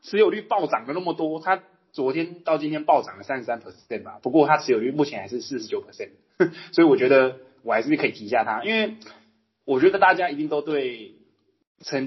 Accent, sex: native, male